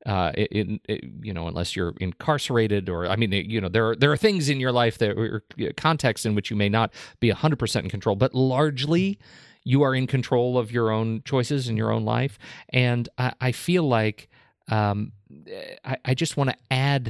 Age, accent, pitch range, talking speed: 40-59, American, 105-125 Hz, 220 wpm